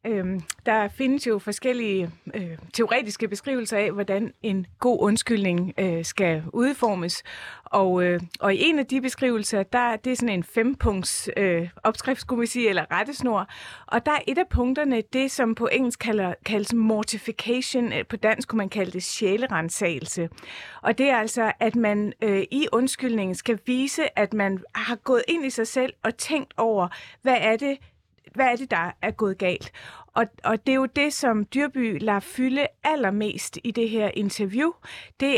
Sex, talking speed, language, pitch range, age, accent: female, 180 wpm, Danish, 195-245 Hz, 30-49, native